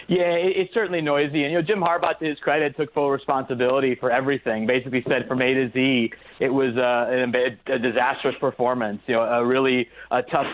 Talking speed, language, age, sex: 195 wpm, English, 30-49, male